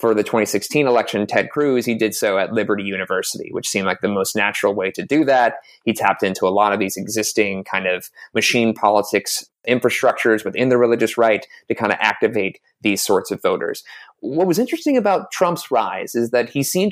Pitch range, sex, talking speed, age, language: 110-150 Hz, male, 200 wpm, 30-49, English